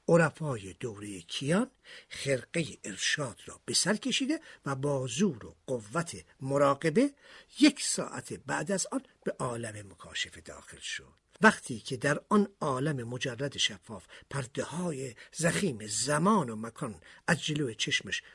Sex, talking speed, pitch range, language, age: male, 135 wpm, 130-210 Hz, Persian, 50-69